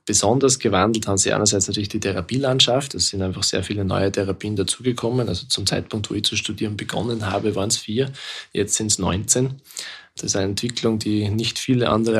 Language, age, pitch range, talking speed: German, 20-39, 105-120 Hz, 195 wpm